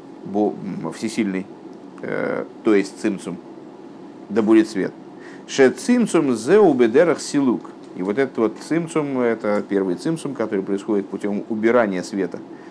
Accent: native